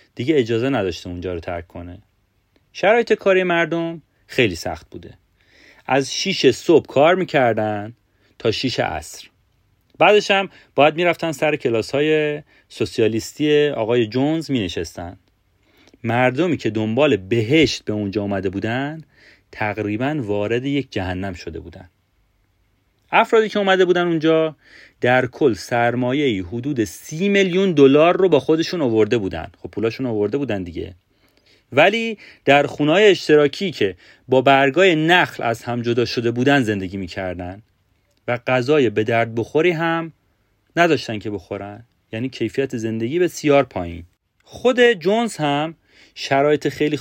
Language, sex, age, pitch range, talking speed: Persian, male, 30-49, 105-155 Hz, 130 wpm